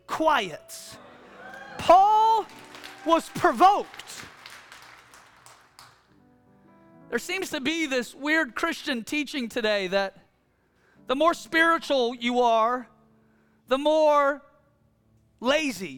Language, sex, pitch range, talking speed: English, male, 260-370 Hz, 85 wpm